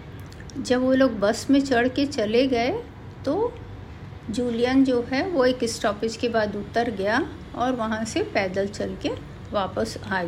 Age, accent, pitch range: 50-69, native, 210-270 Hz